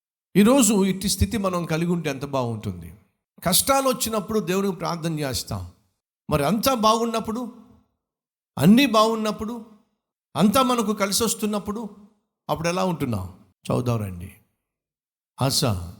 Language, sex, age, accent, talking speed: Telugu, male, 60-79, native, 105 wpm